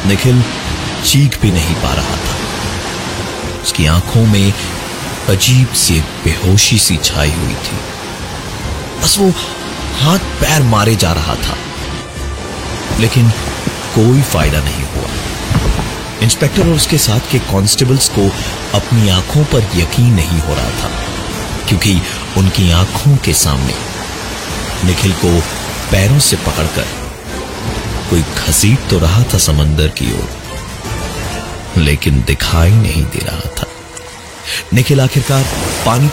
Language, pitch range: Hindi, 85-120 Hz